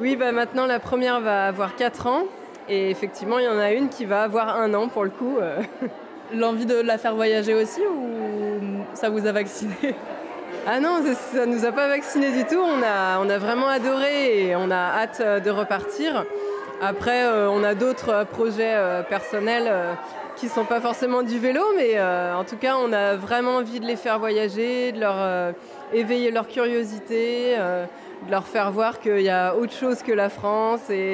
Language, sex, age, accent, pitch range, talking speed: French, female, 20-39, French, 200-245 Hz, 195 wpm